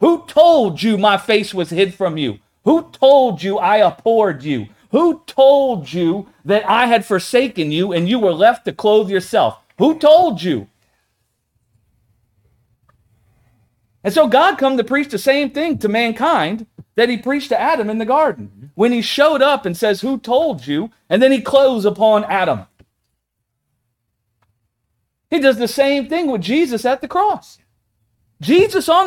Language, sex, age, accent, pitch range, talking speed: English, male, 40-59, American, 185-280 Hz, 165 wpm